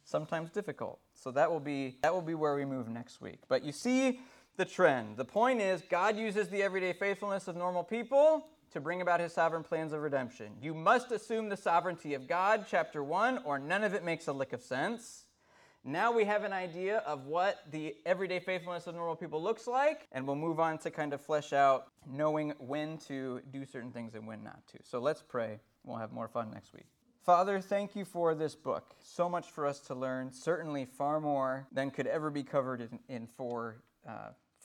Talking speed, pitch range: 215 wpm, 130-170 Hz